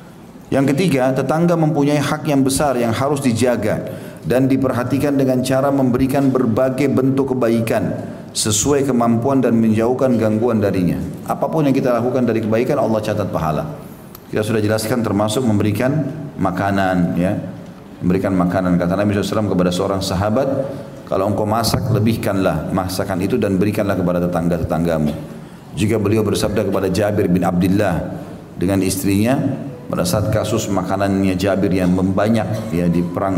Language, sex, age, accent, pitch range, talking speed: Indonesian, male, 40-59, native, 95-130 Hz, 140 wpm